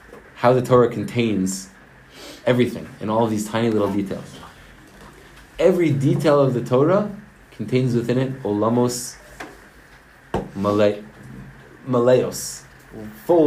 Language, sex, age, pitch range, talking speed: English, male, 20-39, 90-120 Hz, 100 wpm